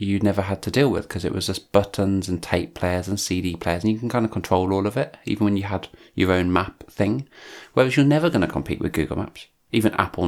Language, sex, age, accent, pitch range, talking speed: English, male, 30-49, British, 90-110 Hz, 265 wpm